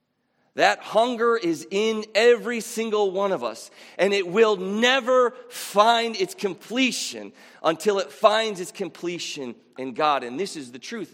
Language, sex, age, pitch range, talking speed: English, male, 40-59, 160-220 Hz, 150 wpm